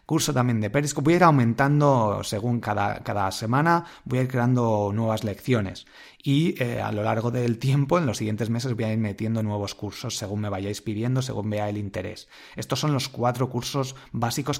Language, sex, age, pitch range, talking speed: Spanish, male, 30-49, 110-135 Hz, 200 wpm